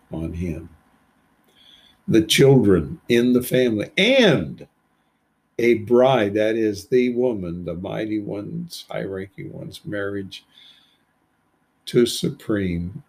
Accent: American